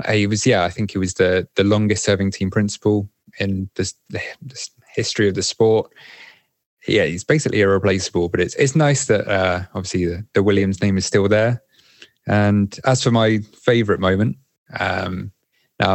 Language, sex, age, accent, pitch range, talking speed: English, male, 20-39, British, 95-115 Hz, 170 wpm